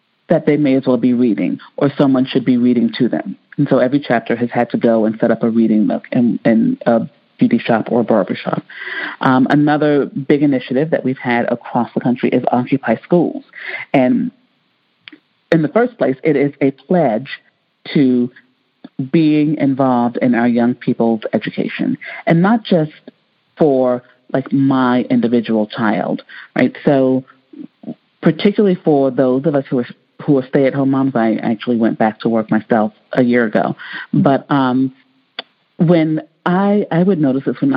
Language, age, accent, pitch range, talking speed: English, 40-59, American, 125-165 Hz, 170 wpm